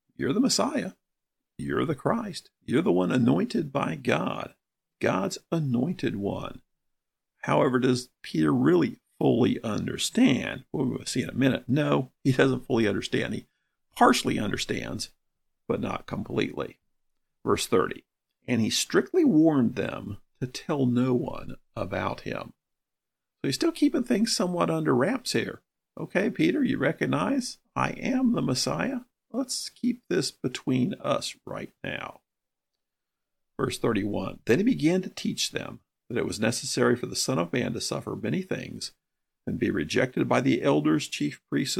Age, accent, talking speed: 50-69, American, 150 wpm